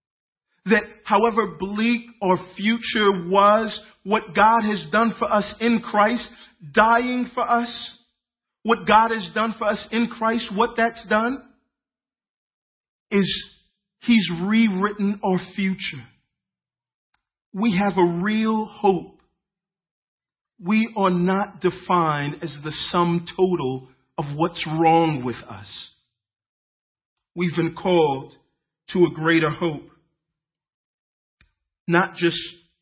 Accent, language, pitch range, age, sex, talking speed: American, English, 135-200 Hz, 40-59, male, 110 wpm